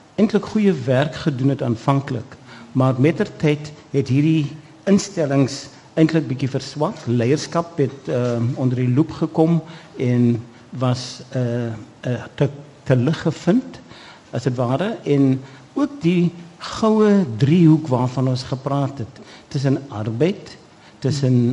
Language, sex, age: Malay, male, 60-79